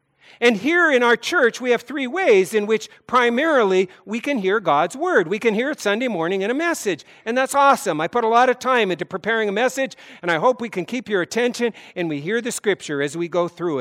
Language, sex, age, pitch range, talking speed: English, male, 50-69, 185-250 Hz, 245 wpm